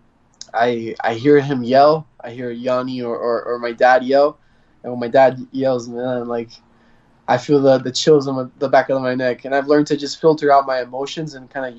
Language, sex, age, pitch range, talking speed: English, male, 20-39, 120-140 Hz, 225 wpm